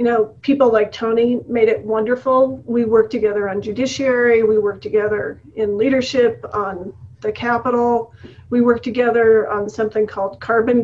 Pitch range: 210-255 Hz